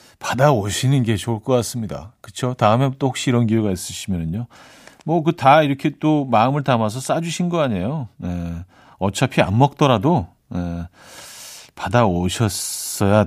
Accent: native